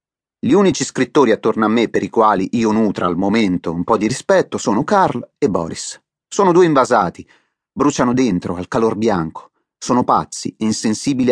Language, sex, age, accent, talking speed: Italian, male, 30-49, native, 175 wpm